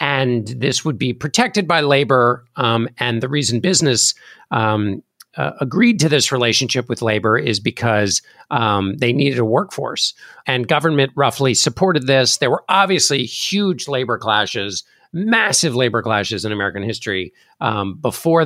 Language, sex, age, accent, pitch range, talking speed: English, male, 50-69, American, 110-150 Hz, 150 wpm